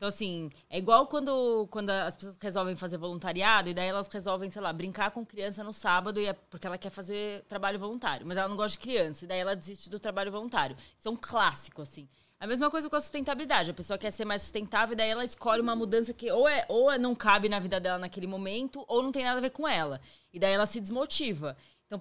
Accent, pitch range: Brazilian, 195-245 Hz